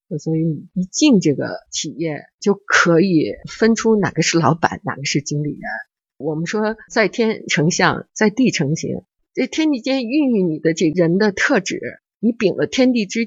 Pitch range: 155-220 Hz